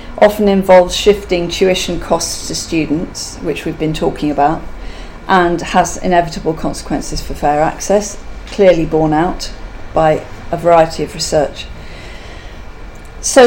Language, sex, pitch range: English, female, 155-210 Hz